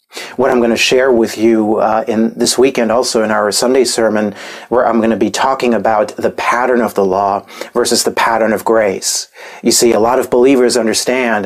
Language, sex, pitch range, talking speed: English, male, 115-120 Hz, 210 wpm